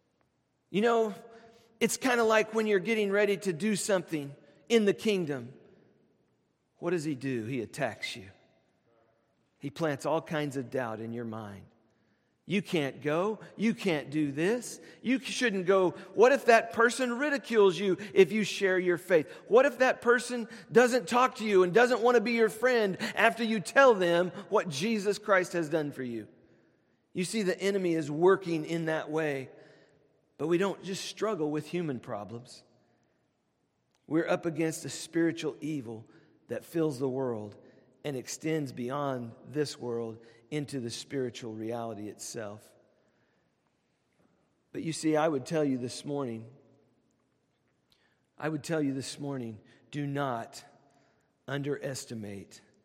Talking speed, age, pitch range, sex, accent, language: 150 wpm, 40-59, 125-200 Hz, male, American, English